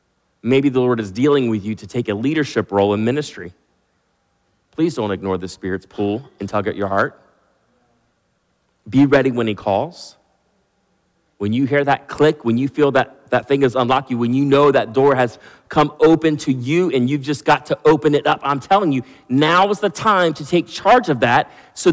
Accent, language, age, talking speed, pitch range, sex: American, English, 30-49, 205 wpm, 125-170 Hz, male